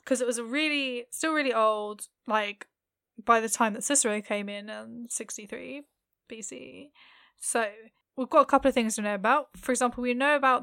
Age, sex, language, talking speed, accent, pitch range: 10-29, female, English, 205 wpm, British, 215-255 Hz